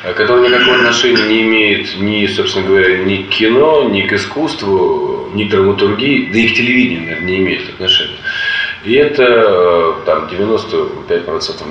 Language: Russian